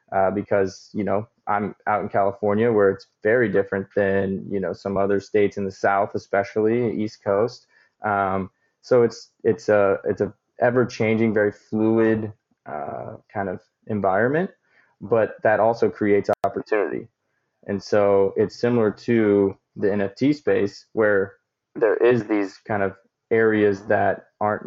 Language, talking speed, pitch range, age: English, 150 wpm, 100-110 Hz, 20-39